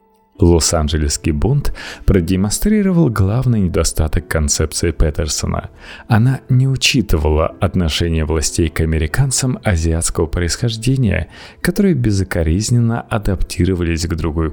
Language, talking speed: Russian, 85 wpm